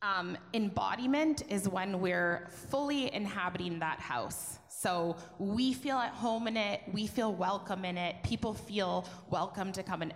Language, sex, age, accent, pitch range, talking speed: English, female, 20-39, American, 165-205 Hz, 160 wpm